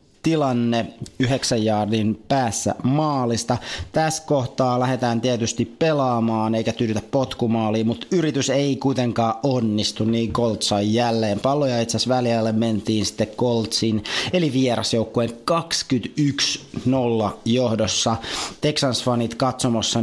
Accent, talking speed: native, 100 wpm